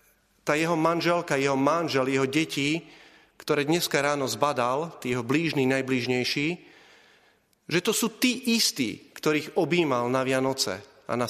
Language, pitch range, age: Slovak, 135-175 Hz, 40-59